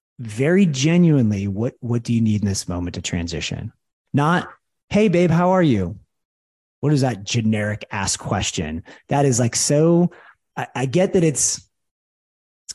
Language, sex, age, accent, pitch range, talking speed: English, male, 30-49, American, 95-125 Hz, 160 wpm